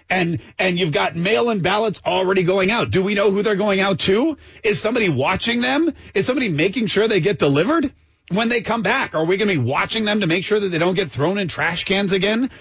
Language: English